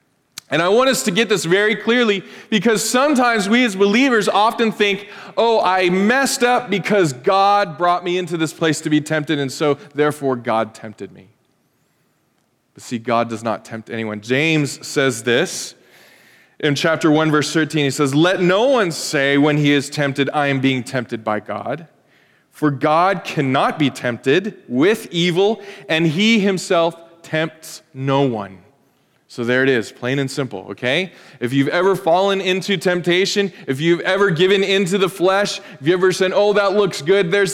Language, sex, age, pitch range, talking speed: English, male, 20-39, 125-195 Hz, 175 wpm